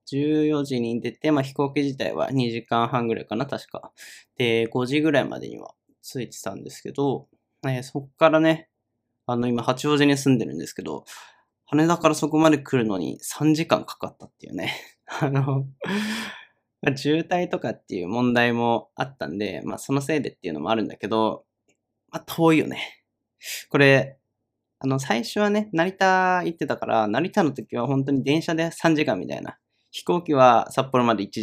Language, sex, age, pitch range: Japanese, male, 20-39, 120-155 Hz